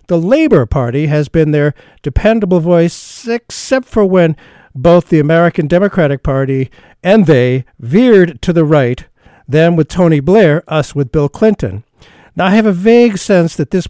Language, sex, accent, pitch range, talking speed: English, male, American, 135-185 Hz, 165 wpm